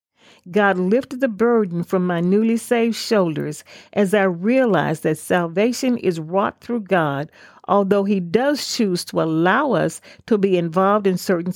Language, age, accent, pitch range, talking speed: English, 50-69, American, 175-230 Hz, 155 wpm